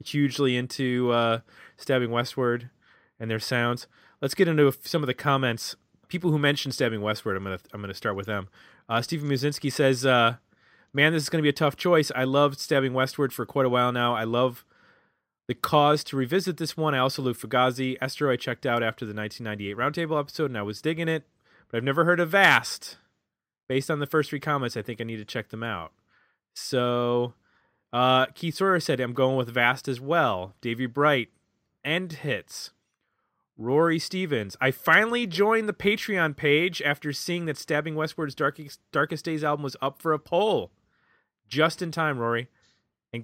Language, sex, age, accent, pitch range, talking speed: English, male, 30-49, American, 120-160 Hz, 190 wpm